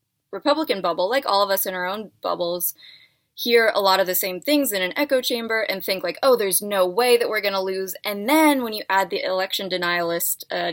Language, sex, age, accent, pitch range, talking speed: English, female, 20-39, American, 180-220 Hz, 235 wpm